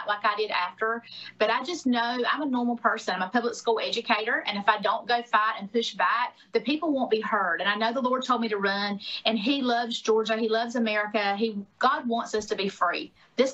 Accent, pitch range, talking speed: American, 210-250 Hz, 245 wpm